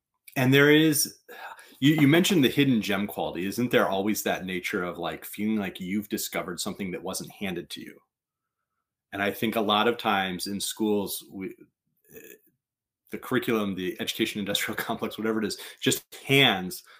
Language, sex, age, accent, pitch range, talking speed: English, male, 30-49, American, 100-130 Hz, 165 wpm